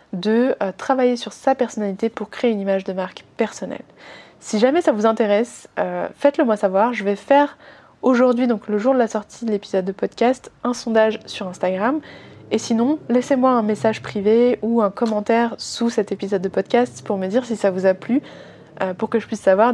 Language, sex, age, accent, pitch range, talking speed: French, female, 20-39, French, 200-245 Hz, 205 wpm